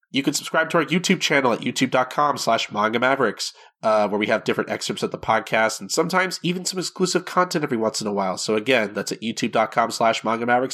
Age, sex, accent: 30-49, male, American